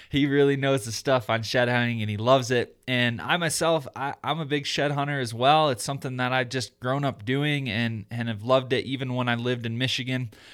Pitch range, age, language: 115-135 Hz, 20-39, English